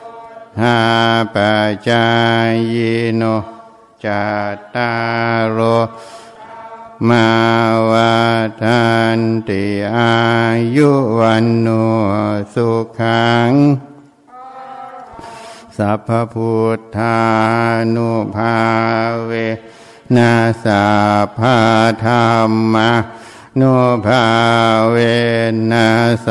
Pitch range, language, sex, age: 110-120 Hz, Thai, male, 60-79